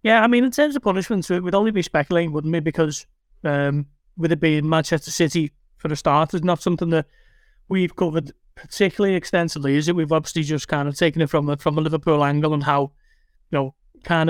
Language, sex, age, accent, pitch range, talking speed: English, male, 30-49, British, 150-175 Hz, 215 wpm